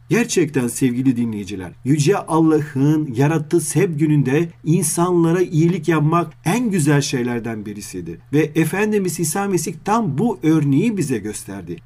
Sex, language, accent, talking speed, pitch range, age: male, Turkish, native, 120 wpm, 130-165 Hz, 40-59